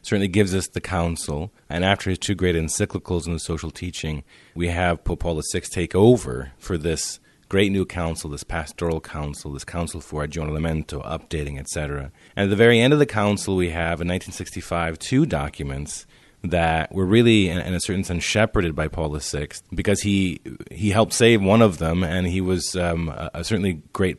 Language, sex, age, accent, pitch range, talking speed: English, male, 30-49, American, 80-100 Hz, 190 wpm